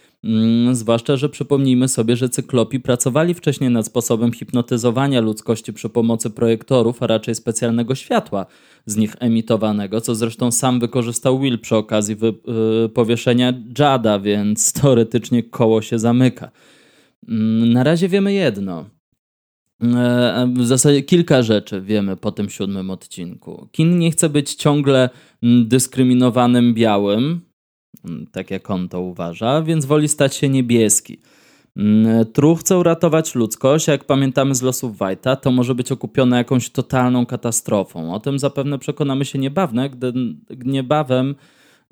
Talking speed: 130 wpm